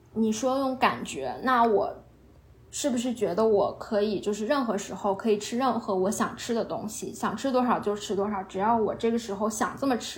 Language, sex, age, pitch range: Chinese, female, 20-39, 205-260 Hz